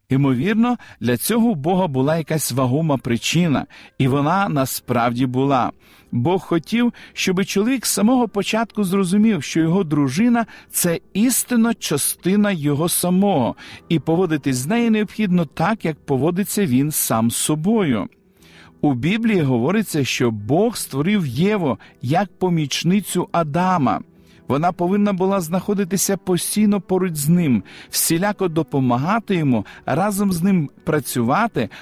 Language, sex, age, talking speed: Ukrainian, male, 50-69, 125 wpm